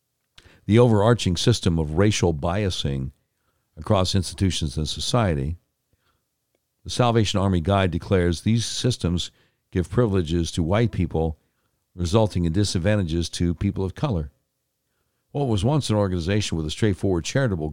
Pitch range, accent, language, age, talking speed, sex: 90-120 Hz, American, English, 60-79, 130 wpm, male